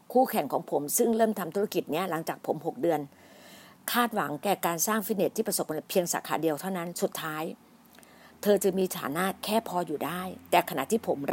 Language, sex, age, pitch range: Thai, female, 60-79, 170-215 Hz